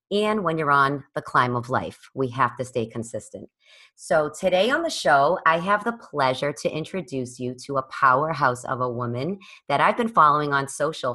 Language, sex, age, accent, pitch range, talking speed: English, female, 30-49, American, 135-170 Hz, 200 wpm